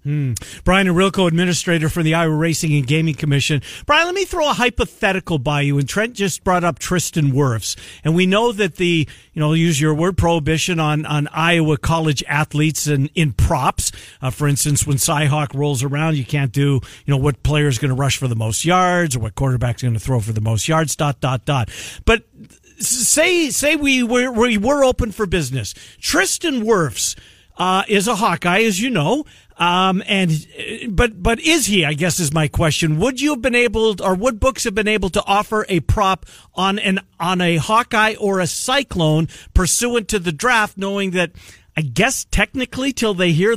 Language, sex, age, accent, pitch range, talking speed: English, male, 50-69, American, 145-210 Hz, 205 wpm